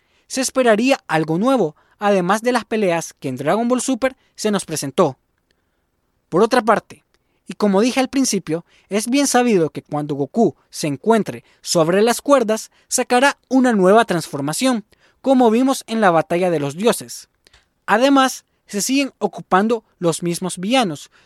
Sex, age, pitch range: male, 20-39, 160-245 Hz